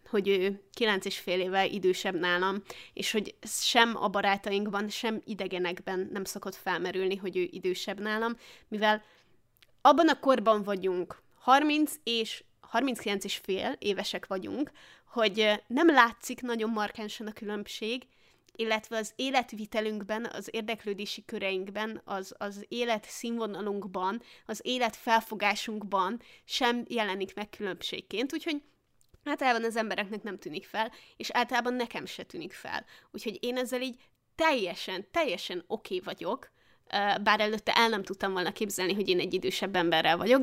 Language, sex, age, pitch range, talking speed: Hungarian, female, 20-39, 195-240 Hz, 140 wpm